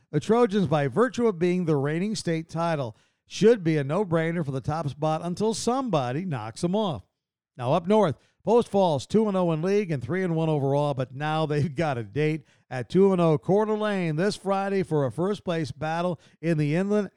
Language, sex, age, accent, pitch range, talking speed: English, male, 50-69, American, 140-185 Hz, 185 wpm